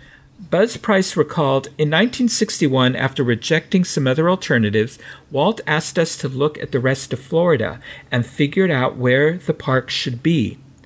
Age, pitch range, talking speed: 50-69, 130-175 Hz, 155 wpm